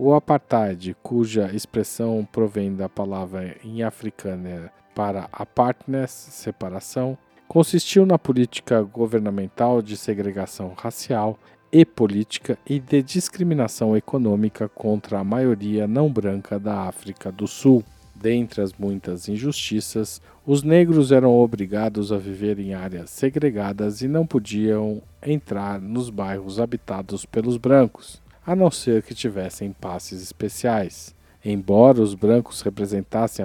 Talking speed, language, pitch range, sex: 120 wpm, Portuguese, 100-130 Hz, male